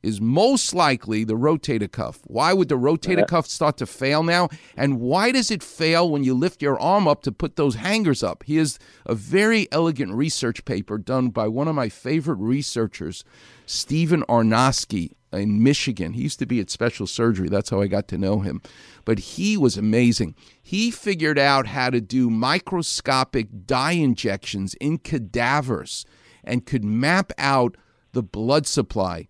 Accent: American